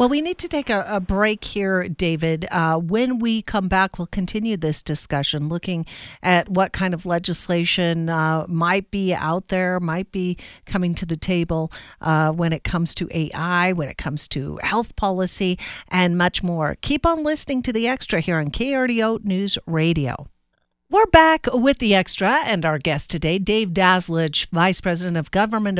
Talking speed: 180 wpm